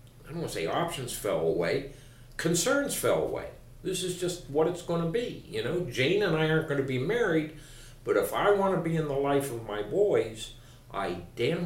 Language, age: English, 60-79